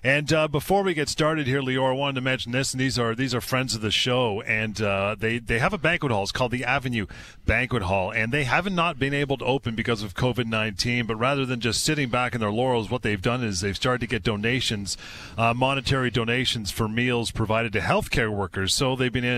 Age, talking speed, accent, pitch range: 40-59, 240 wpm, American, 105-135 Hz